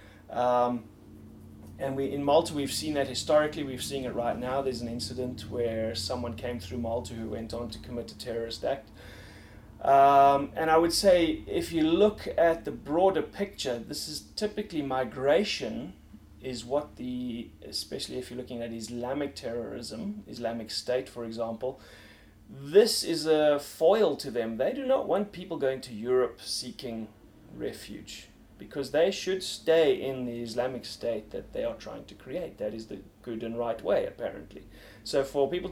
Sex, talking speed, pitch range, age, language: male, 170 wpm, 115-150 Hz, 30-49, English